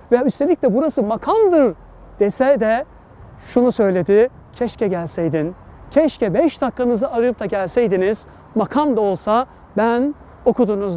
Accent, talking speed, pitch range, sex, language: native, 120 wpm, 205-275 Hz, male, Turkish